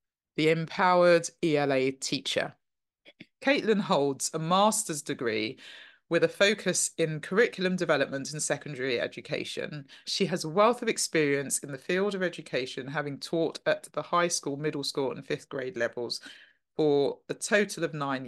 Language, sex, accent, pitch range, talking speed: English, female, British, 135-175 Hz, 150 wpm